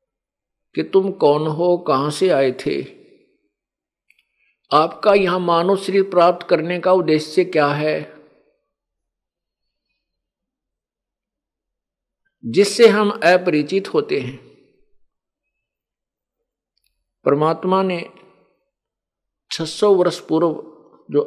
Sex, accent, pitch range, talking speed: male, native, 145-195 Hz, 80 wpm